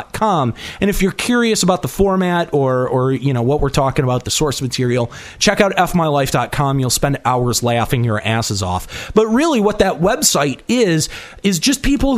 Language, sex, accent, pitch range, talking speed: English, male, American, 130-200 Hz, 180 wpm